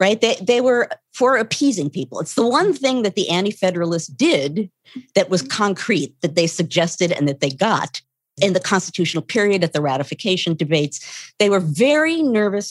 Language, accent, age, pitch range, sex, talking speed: English, American, 40-59, 165-240 Hz, female, 175 wpm